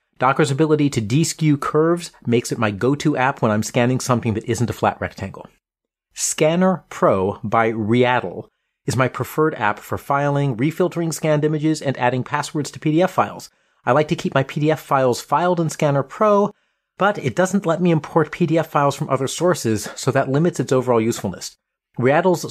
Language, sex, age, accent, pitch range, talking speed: English, male, 30-49, American, 115-155 Hz, 180 wpm